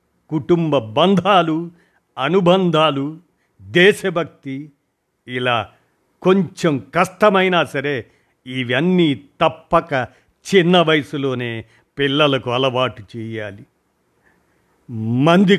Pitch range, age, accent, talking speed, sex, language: 125-165 Hz, 50-69, native, 60 wpm, male, Telugu